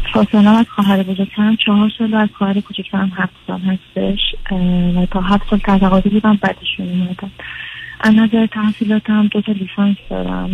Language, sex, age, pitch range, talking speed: Persian, female, 40-59, 190-215 Hz, 155 wpm